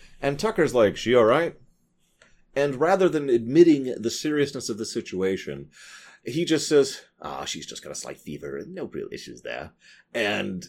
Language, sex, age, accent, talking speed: English, male, 30-49, American, 170 wpm